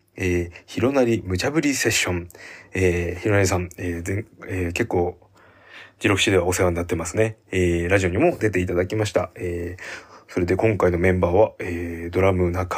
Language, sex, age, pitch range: Japanese, male, 20-39, 90-110 Hz